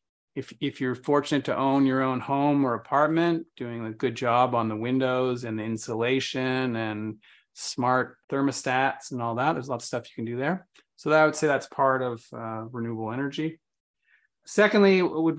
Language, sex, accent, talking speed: English, male, American, 195 wpm